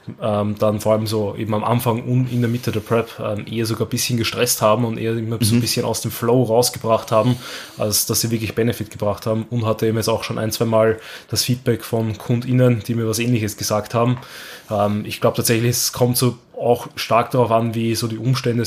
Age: 20-39